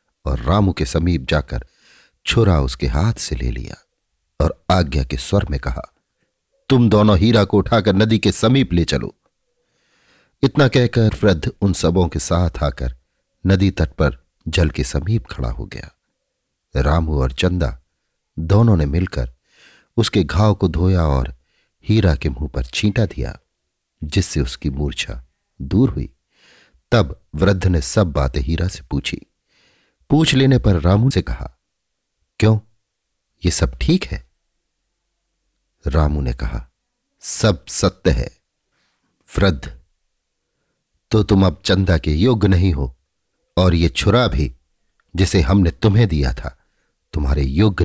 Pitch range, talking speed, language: 75-105 Hz, 140 wpm, Hindi